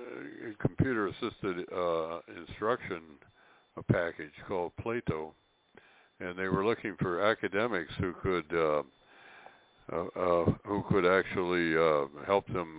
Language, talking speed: English, 115 wpm